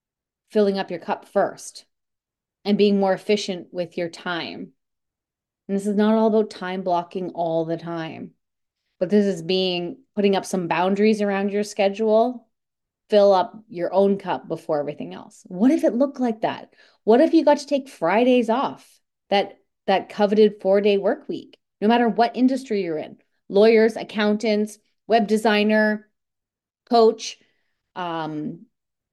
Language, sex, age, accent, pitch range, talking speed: English, female, 30-49, American, 180-225 Hz, 150 wpm